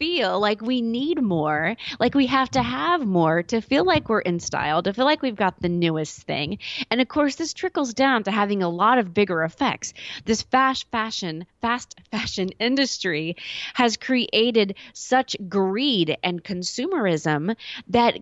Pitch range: 180-235 Hz